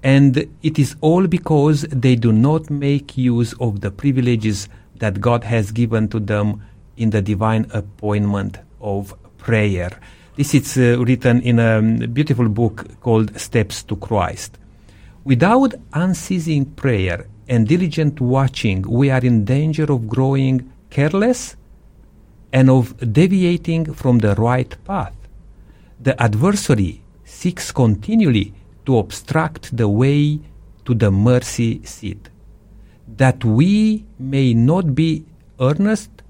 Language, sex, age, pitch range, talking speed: English, male, 50-69, 105-140 Hz, 125 wpm